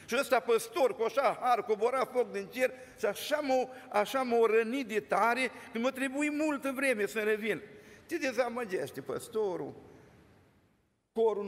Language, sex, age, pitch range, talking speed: Romanian, male, 50-69, 200-270 Hz, 150 wpm